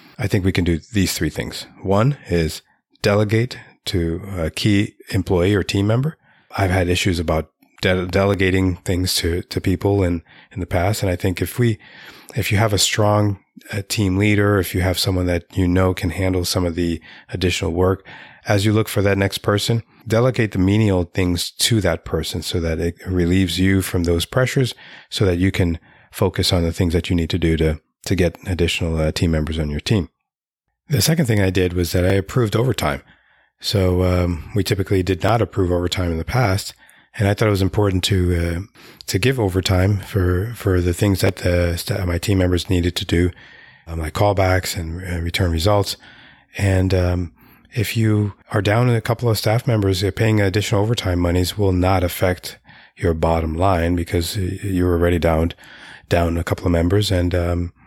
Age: 30-49